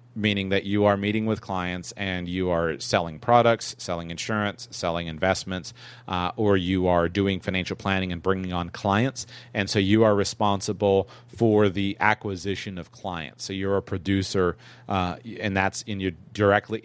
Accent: American